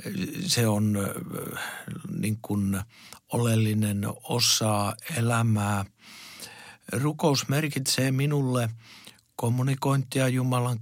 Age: 60-79